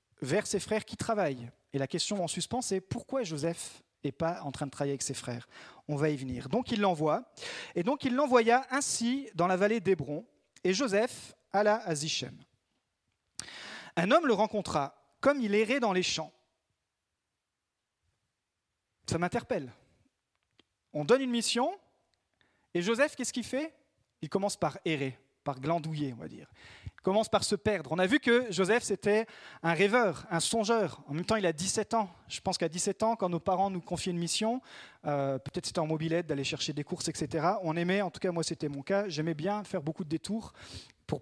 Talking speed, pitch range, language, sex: 195 wpm, 165-230 Hz, French, male